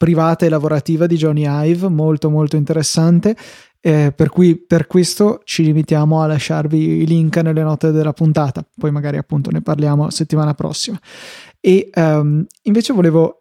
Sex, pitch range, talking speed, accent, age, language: male, 155-180 Hz, 155 wpm, native, 20-39, Italian